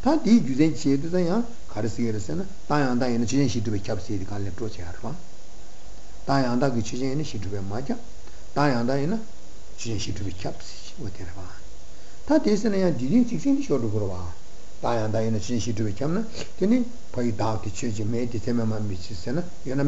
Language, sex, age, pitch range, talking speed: Italian, male, 60-79, 105-140 Hz, 170 wpm